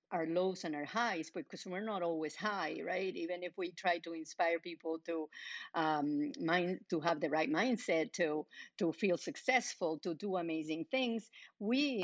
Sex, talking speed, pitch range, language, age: female, 175 wpm, 160-190 Hz, English, 50-69